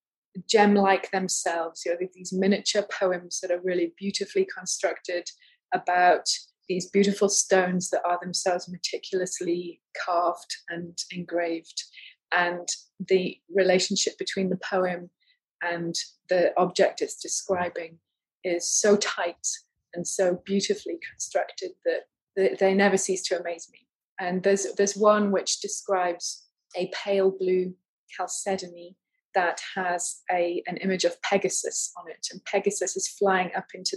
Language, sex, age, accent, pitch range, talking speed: English, female, 30-49, British, 180-200 Hz, 130 wpm